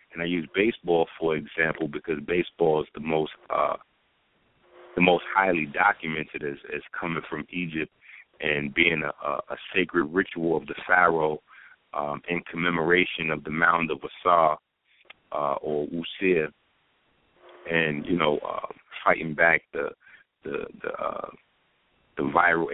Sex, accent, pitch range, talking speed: male, American, 80-90 Hz, 145 wpm